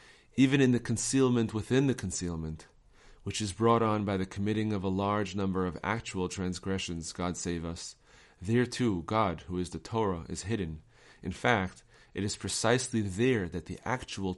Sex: male